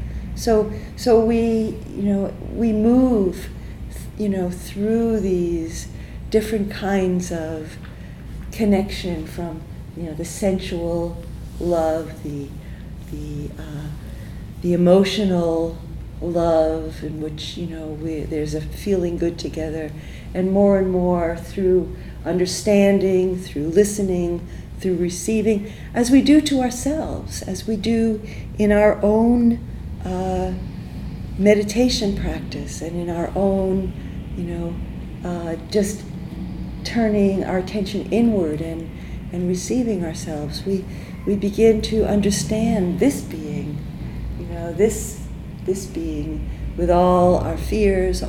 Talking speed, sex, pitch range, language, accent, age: 115 wpm, female, 160-205 Hz, English, American, 40-59